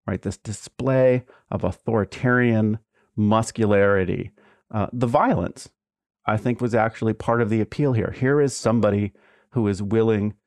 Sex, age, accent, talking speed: male, 40-59, American, 140 wpm